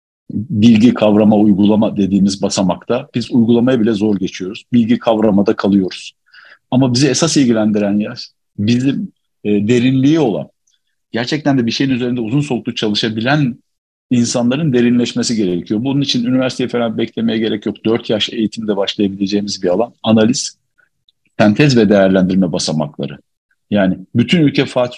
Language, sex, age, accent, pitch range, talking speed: Turkish, male, 50-69, native, 110-140 Hz, 130 wpm